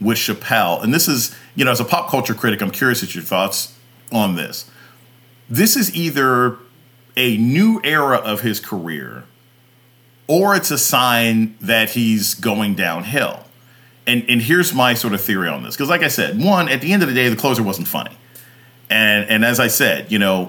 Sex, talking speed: male, 195 wpm